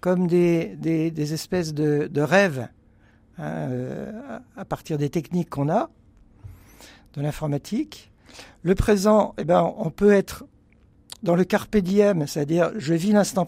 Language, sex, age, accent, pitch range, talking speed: French, male, 60-79, French, 145-195 Hz, 145 wpm